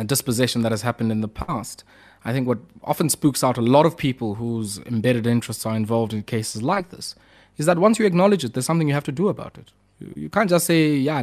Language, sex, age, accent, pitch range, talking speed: English, male, 20-39, South African, 115-145 Hz, 240 wpm